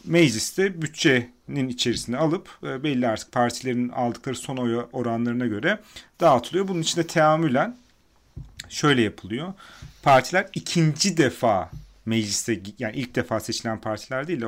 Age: 40-59